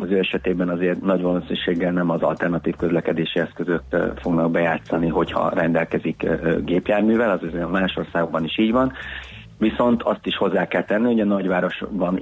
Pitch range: 85-95 Hz